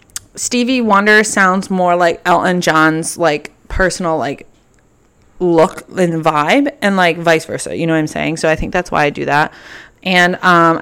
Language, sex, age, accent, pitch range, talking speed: English, female, 20-39, American, 160-205 Hz, 180 wpm